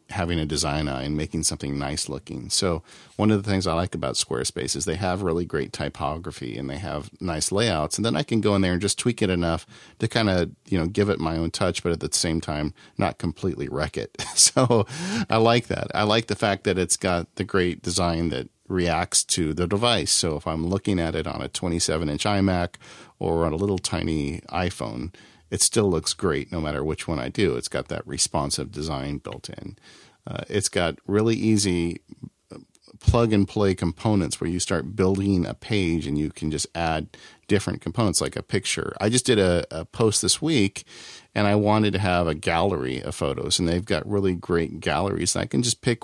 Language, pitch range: English, 80-100 Hz